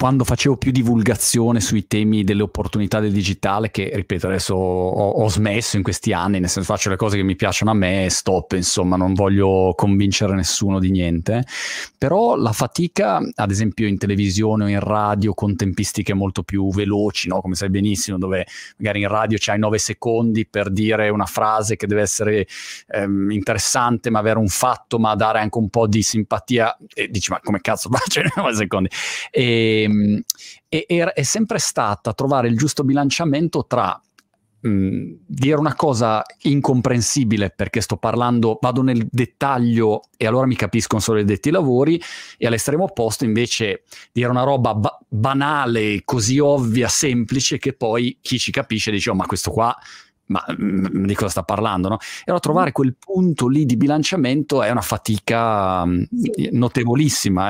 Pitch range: 100-125 Hz